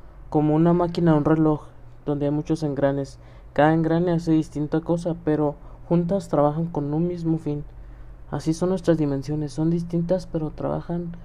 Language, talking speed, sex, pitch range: Spanish, 160 wpm, male, 135-160 Hz